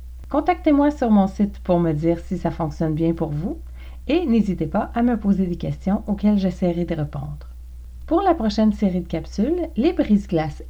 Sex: female